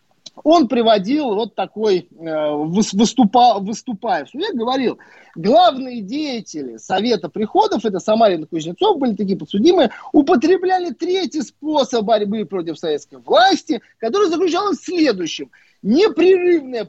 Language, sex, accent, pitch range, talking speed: Russian, male, native, 185-300 Hz, 115 wpm